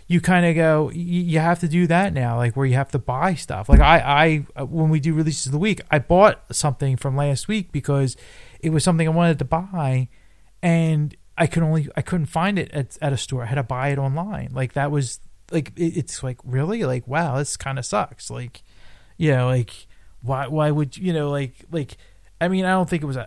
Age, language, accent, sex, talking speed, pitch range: 30-49, English, American, male, 230 wpm, 130-165 Hz